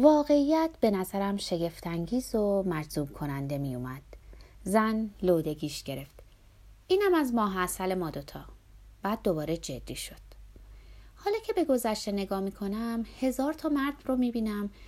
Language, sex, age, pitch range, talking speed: Persian, female, 30-49, 155-230 Hz, 135 wpm